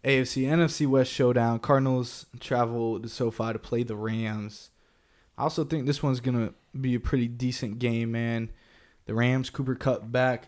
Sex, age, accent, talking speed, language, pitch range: male, 20-39, American, 180 wpm, English, 110-125 Hz